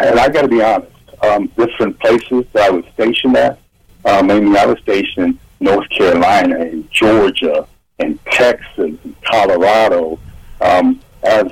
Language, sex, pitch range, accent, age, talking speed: English, male, 105-155 Hz, American, 60-79, 155 wpm